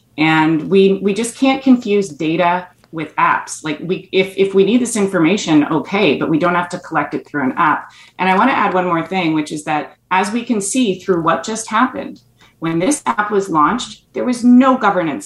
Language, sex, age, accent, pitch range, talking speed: English, female, 30-49, American, 155-200 Hz, 220 wpm